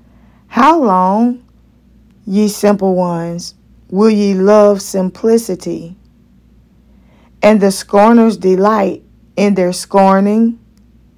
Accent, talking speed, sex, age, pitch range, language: American, 85 wpm, female, 20-39, 185-220 Hz, English